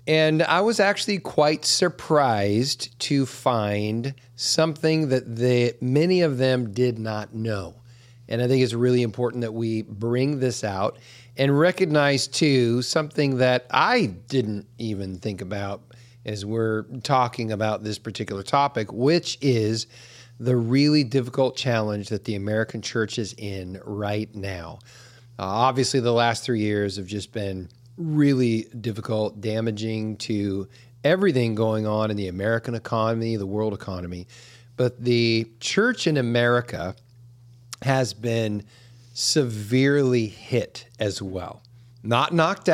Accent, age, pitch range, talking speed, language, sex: American, 40-59, 110-130 Hz, 135 wpm, English, male